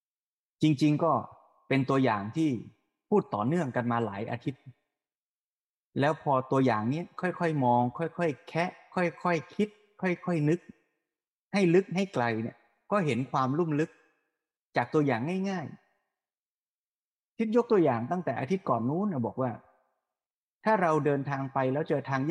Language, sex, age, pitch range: Thai, male, 20-39, 125-165 Hz